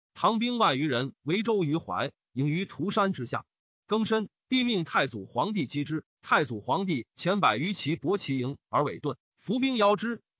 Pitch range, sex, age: 145-205 Hz, male, 30-49